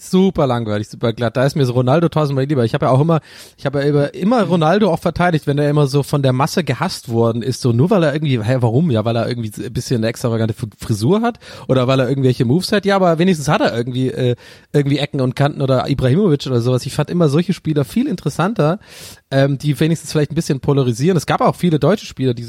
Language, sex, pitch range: German, male, 125-165 Hz